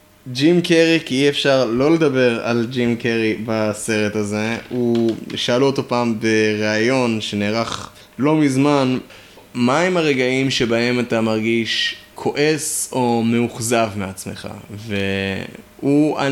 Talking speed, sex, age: 110 wpm, male, 20-39